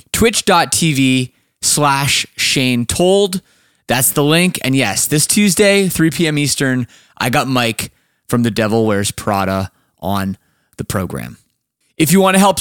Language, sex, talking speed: English, male, 145 wpm